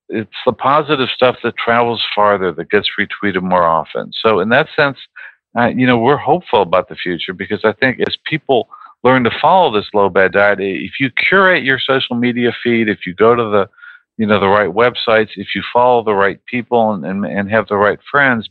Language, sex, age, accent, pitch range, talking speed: English, male, 50-69, American, 100-125 Hz, 215 wpm